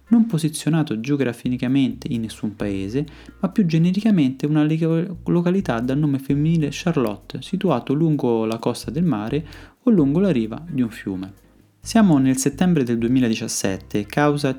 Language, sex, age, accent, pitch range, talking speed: Italian, male, 20-39, native, 115-165 Hz, 140 wpm